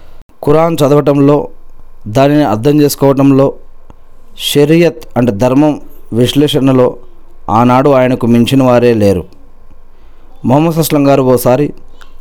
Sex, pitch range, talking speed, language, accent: male, 115-145 Hz, 95 wpm, Telugu, native